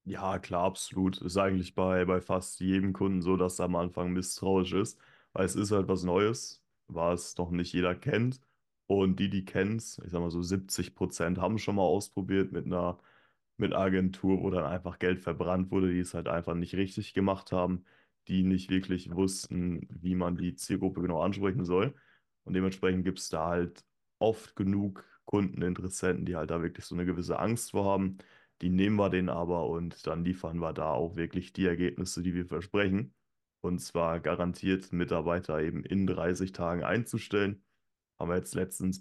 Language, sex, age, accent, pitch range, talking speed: German, male, 20-39, German, 90-95 Hz, 185 wpm